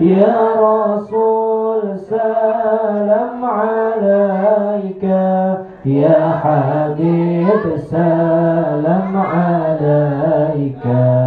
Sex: male